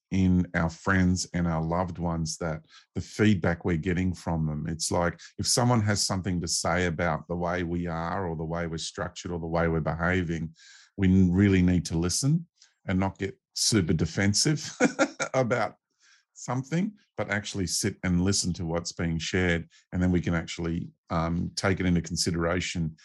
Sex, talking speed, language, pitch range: male, 170 wpm, English, 85-95 Hz